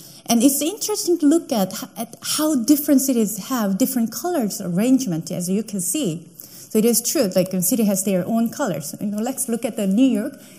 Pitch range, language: 215-285 Hz, English